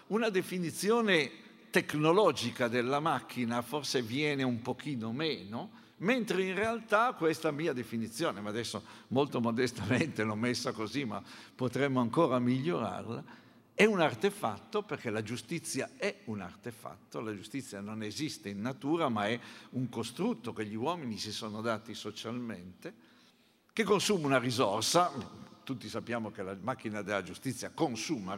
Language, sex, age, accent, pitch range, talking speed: Italian, male, 60-79, native, 115-170 Hz, 135 wpm